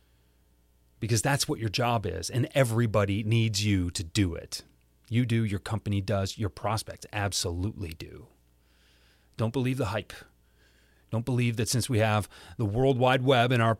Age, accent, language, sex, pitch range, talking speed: 30-49, American, English, male, 100-135 Hz, 165 wpm